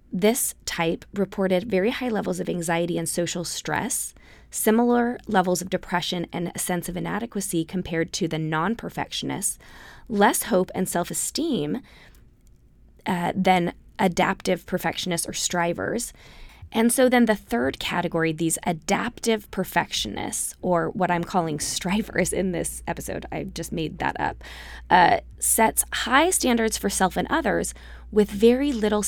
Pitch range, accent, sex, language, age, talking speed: 170-215 Hz, American, female, English, 20-39, 135 wpm